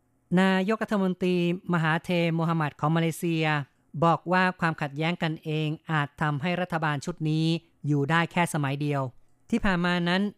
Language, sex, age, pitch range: Thai, female, 30-49, 145-175 Hz